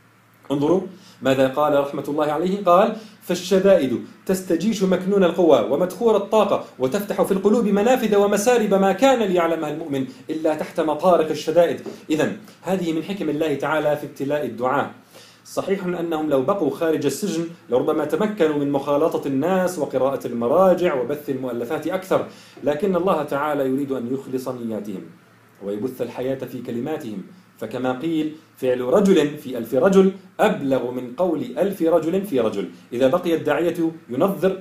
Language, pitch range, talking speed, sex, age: Arabic, 135-185 Hz, 140 wpm, male, 40-59